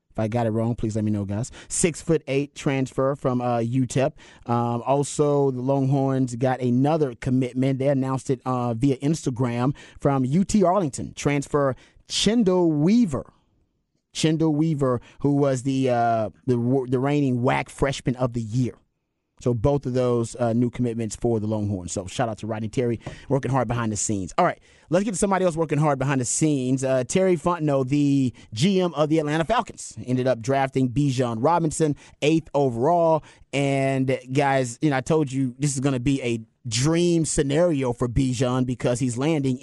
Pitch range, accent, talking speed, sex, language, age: 125-150 Hz, American, 175 wpm, male, English, 30-49